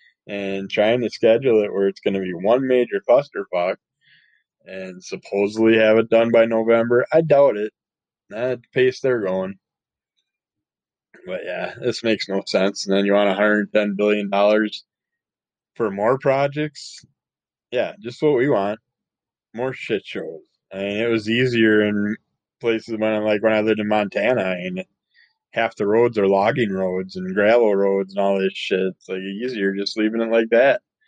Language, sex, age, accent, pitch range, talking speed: English, male, 20-39, American, 100-115 Hz, 175 wpm